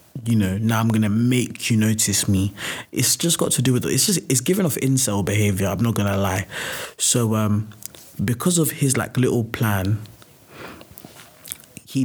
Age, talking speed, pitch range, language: 20-39, 175 wpm, 110-130 Hz, English